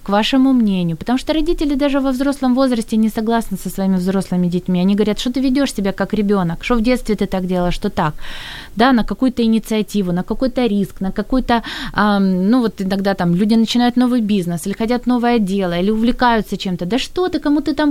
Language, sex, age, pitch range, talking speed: Ukrainian, female, 20-39, 195-255 Hz, 210 wpm